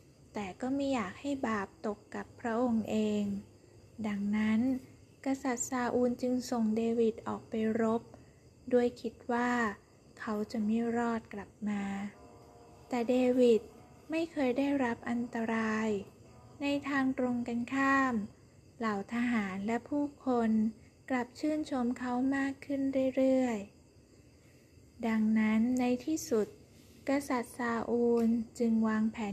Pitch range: 210-245 Hz